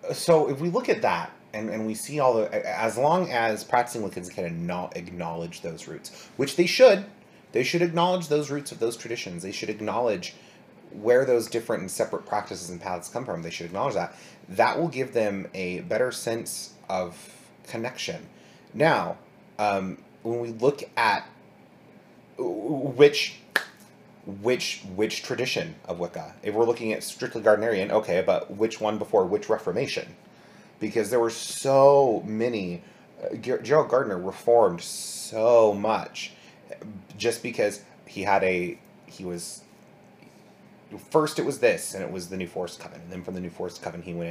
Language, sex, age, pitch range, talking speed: English, male, 30-49, 90-130 Hz, 165 wpm